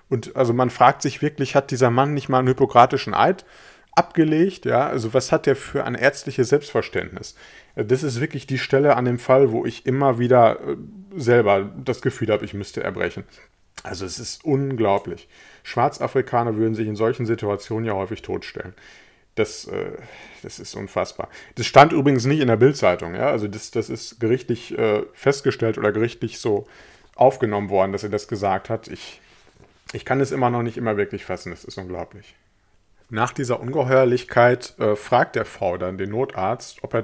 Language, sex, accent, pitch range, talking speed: German, male, German, 110-135 Hz, 170 wpm